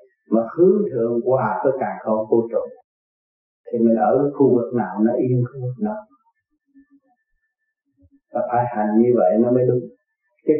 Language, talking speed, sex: Vietnamese, 170 wpm, male